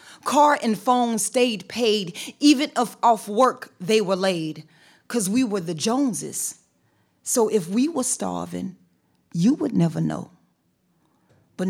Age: 40-59